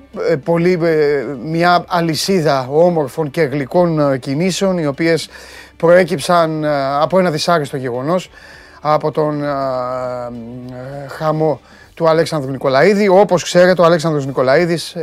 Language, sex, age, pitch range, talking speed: Greek, male, 30-49, 135-165 Hz, 95 wpm